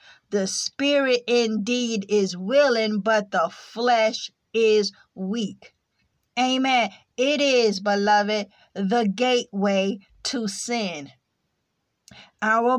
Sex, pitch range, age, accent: female, 210-245 Hz, 50-69, American